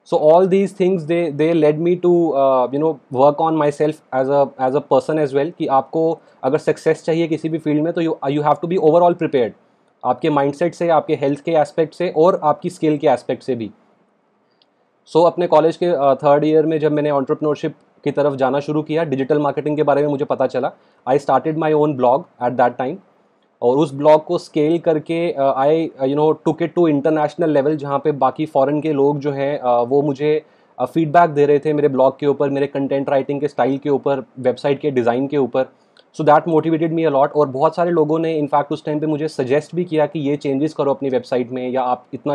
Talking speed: 220 wpm